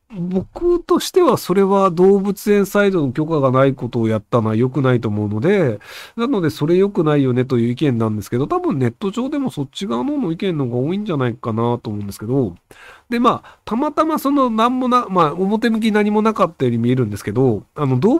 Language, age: Japanese, 40-59